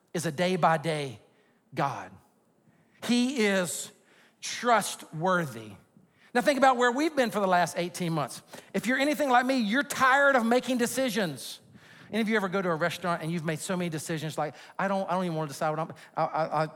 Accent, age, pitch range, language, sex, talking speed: American, 50-69, 185-245 Hz, English, male, 185 wpm